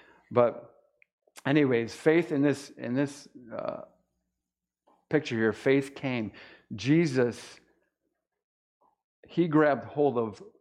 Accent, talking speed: American, 95 wpm